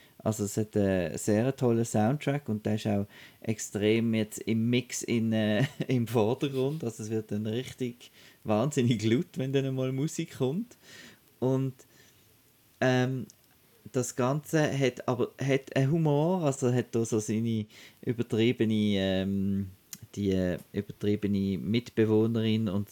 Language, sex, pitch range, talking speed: German, male, 105-120 Hz, 130 wpm